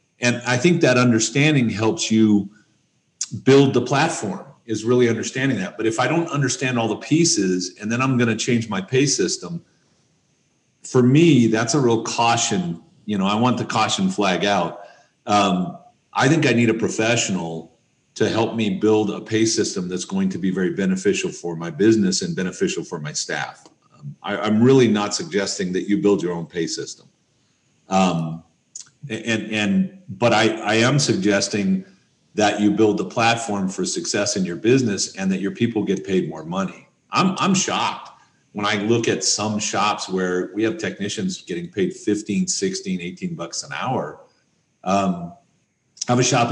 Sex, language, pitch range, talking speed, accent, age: male, English, 100-130 Hz, 175 wpm, American, 40-59